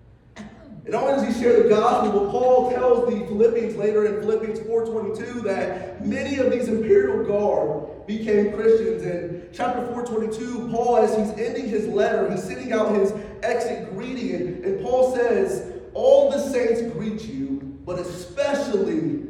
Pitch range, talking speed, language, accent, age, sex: 185-230 Hz, 150 wpm, English, American, 30-49, male